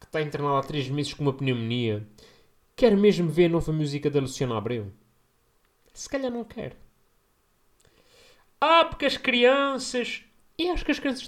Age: 30-49